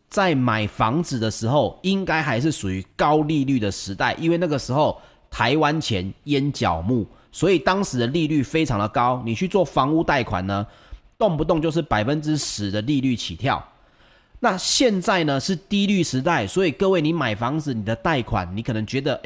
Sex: male